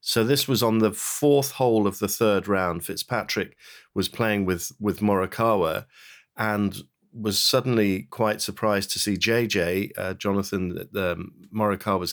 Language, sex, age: English, male, 50-69